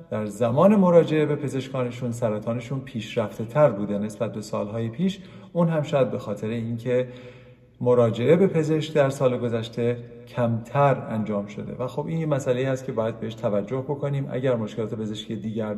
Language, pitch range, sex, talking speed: Persian, 120-155 Hz, male, 165 wpm